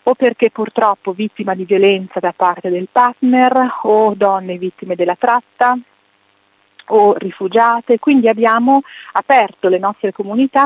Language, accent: Italian, native